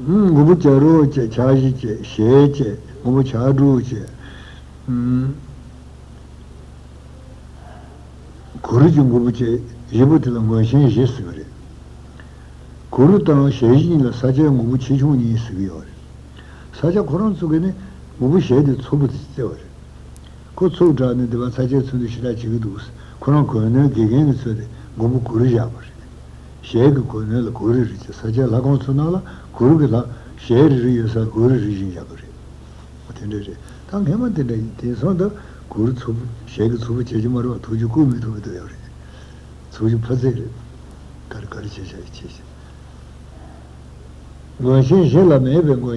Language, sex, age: Italian, male, 60-79